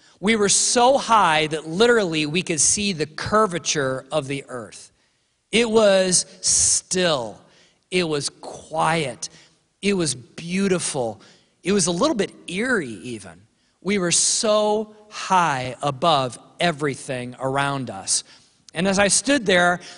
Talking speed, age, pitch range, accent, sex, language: 130 wpm, 40-59, 150-205 Hz, American, male, English